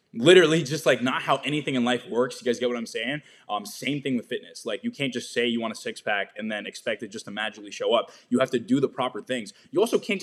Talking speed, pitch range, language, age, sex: 285 wpm, 115-150 Hz, English, 20-39, male